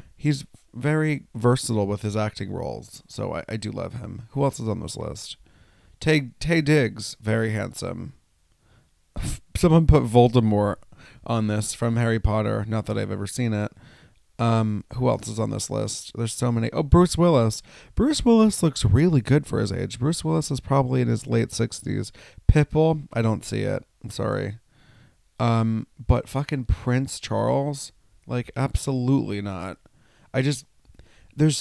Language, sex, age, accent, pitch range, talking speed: English, male, 30-49, American, 100-130 Hz, 160 wpm